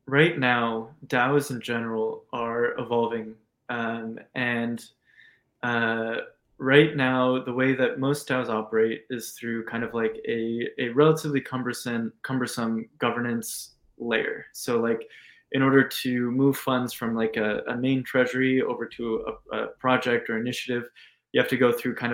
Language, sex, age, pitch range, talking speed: English, male, 20-39, 115-135 Hz, 150 wpm